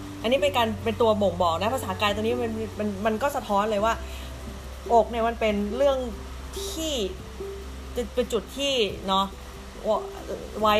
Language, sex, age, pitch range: Thai, female, 20-39, 175-235 Hz